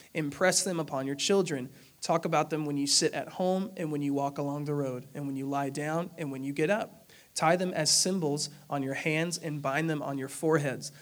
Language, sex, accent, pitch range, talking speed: English, male, American, 140-165 Hz, 235 wpm